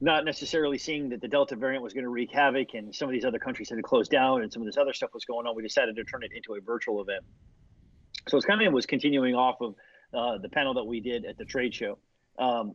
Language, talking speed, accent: English, 285 wpm, American